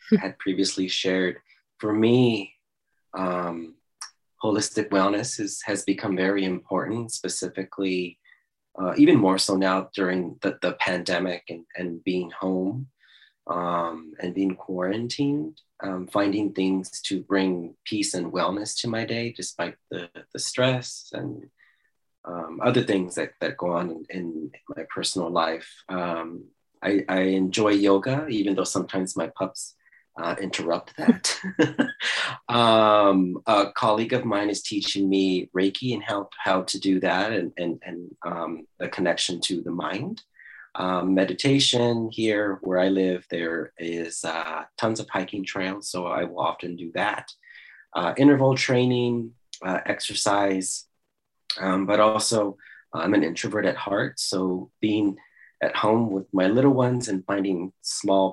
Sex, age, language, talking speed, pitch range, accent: male, 30-49, English, 145 wpm, 90-110 Hz, American